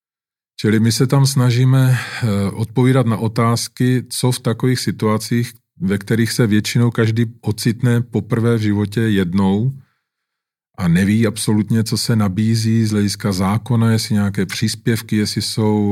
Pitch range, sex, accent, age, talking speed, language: 100-115 Hz, male, native, 40-59, 135 wpm, Czech